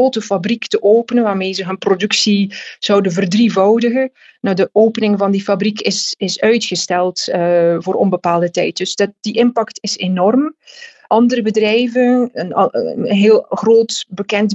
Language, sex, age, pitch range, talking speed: Dutch, female, 30-49, 190-225 Hz, 150 wpm